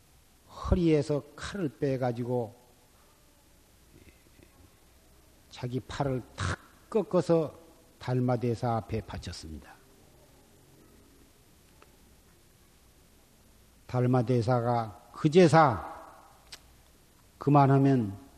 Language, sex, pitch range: Korean, male, 85-140 Hz